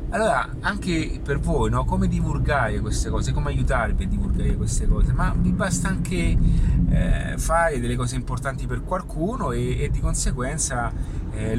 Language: Italian